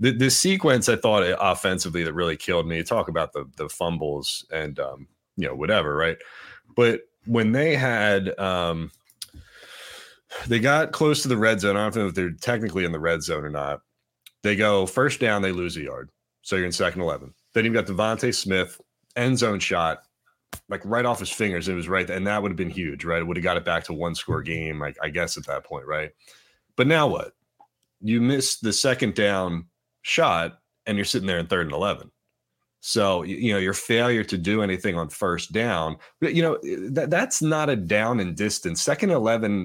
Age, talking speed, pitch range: 30-49, 210 wpm, 85-115 Hz